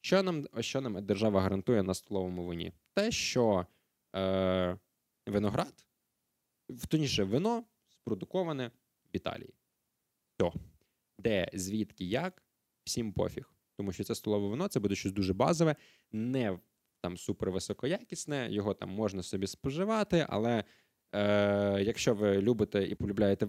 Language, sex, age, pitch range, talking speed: Ukrainian, male, 20-39, 100-135 Hz, 125 wpm